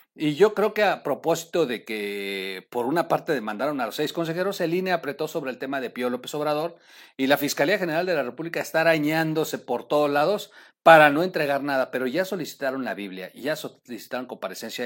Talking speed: 200 wpm